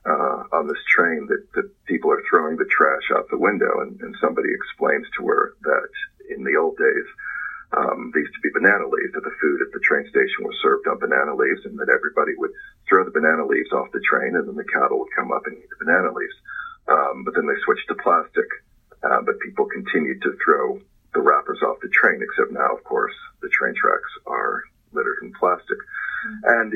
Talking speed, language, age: 215 wpm, English, 40-59